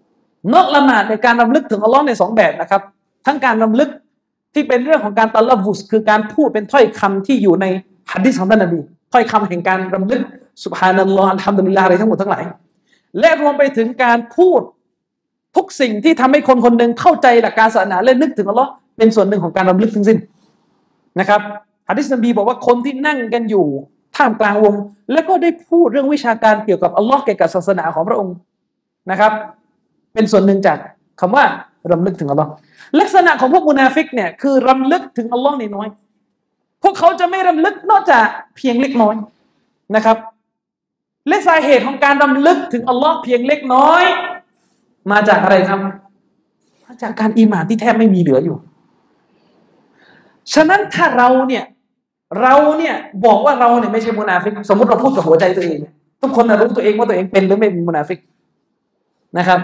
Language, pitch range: Thai, 200-275 Hz